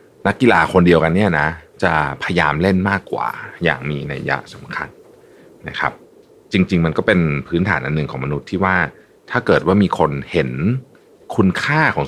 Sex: male